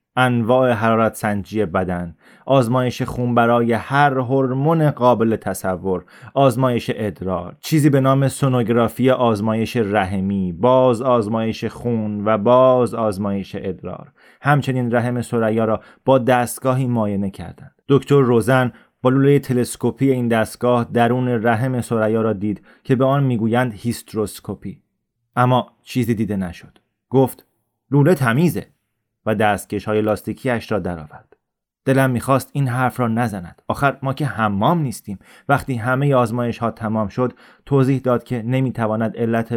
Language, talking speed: Persian, 130 wpm